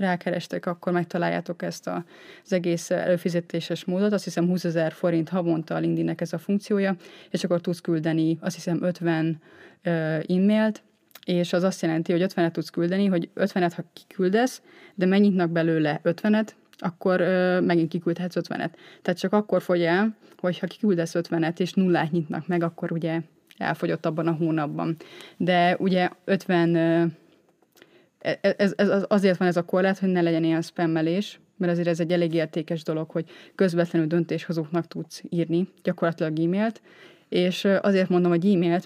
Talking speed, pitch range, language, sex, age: 160 wpm, 170-190 Hz, Hungarian, female, 20-39